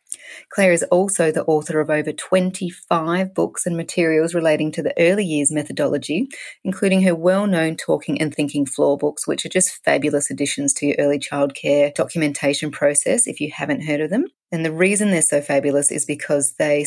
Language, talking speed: English, 180 wpm